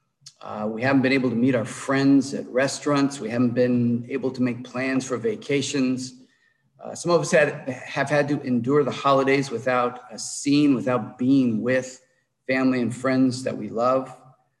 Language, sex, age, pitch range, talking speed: English, male, 50-69, 125-145 Hz, 175 wpm